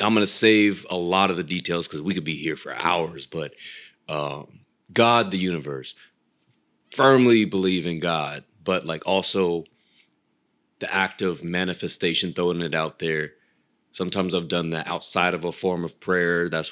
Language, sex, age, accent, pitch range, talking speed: English, male, 30-49, American, 80-100 Hz, 170 wpm